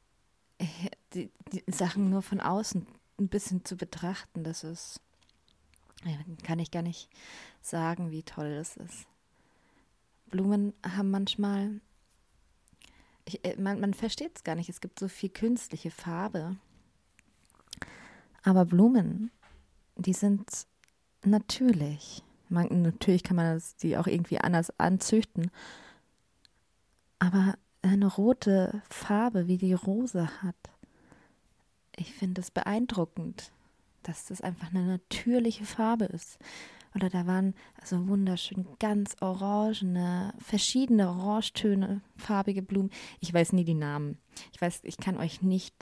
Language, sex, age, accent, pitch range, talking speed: German, female, 20-39, German, 170-200 Hz, 120 wpm